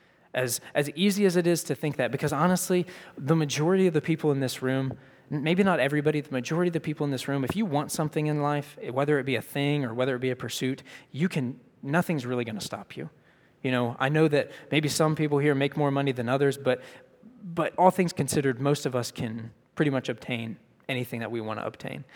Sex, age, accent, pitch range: male, 20-39, American, 135-170 Hz